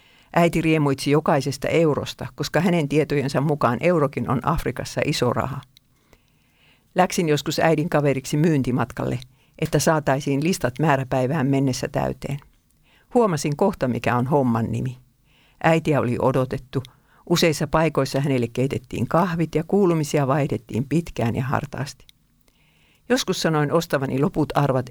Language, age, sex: Finnish, 50-69, female